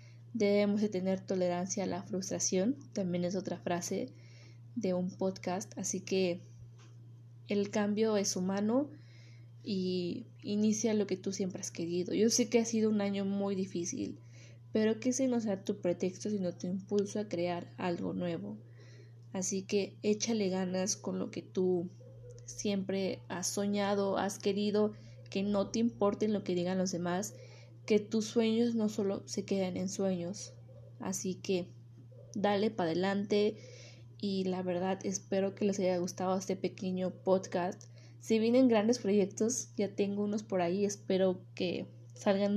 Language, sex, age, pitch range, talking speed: Spanish, female, 20-39, 165-205 Hz, 155 wpm